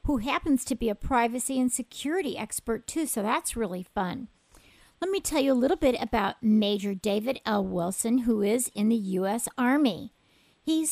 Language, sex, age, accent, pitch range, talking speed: English, female, 50-69, American, 210-270 Hz, 180 wpm